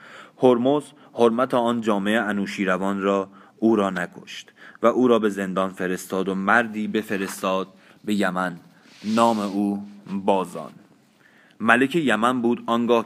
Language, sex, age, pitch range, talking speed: Persian, male, 30-49, 95-105 Hz, 125 wpm